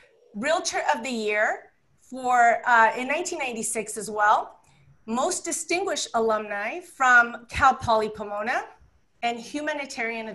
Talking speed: 115 wpm